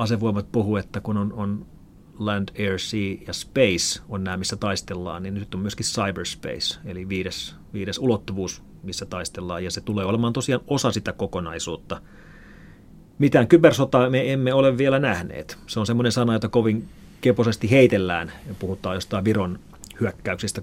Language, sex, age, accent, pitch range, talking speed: Finnish, male, 30-49, native, 100-125 Hz, 155 wpm